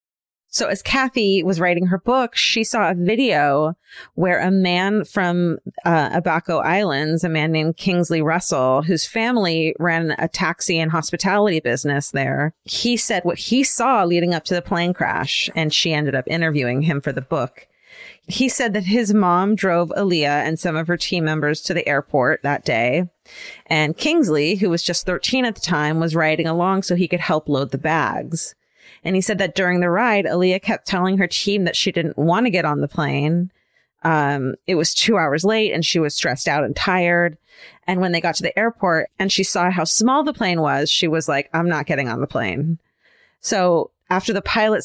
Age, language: 30-49, English